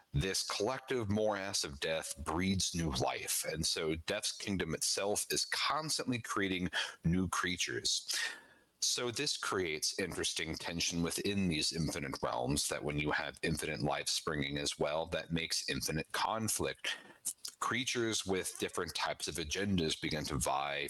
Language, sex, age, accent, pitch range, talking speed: English, male, 40-59, American, 80-100 Hz, 140 wpm